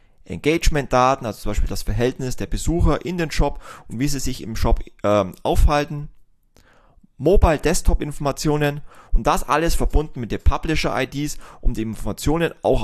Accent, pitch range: German, 105-145 Hz